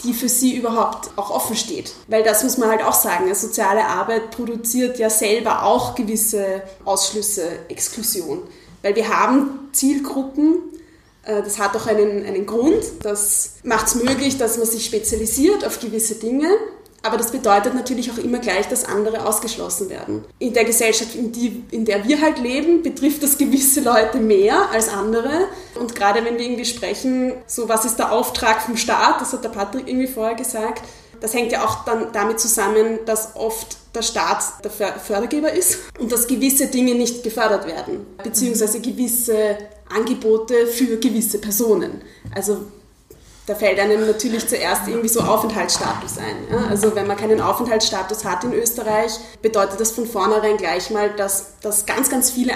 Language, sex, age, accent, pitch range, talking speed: German, female, 20-39, German, 215-250 Hz, 170 wpm